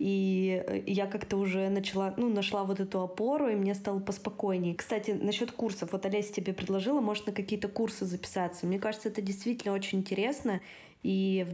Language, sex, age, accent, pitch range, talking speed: Russian, female, 20-39, native, 190-215 Hz, 175 wpm